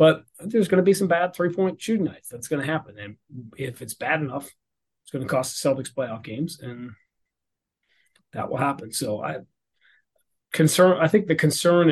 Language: English